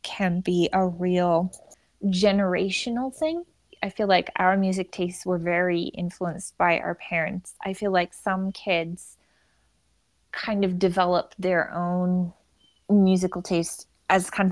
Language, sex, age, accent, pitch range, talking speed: English, female, 20-39, American, 165-190 Hz, 130 wpm